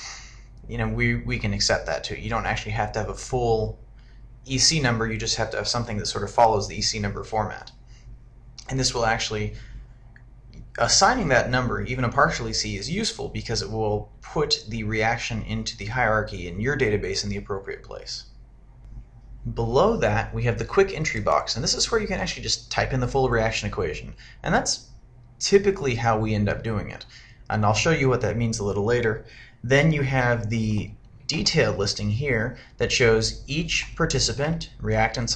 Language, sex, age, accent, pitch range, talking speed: English, male, 30-49, American, 110-130 Hz, 195 wpm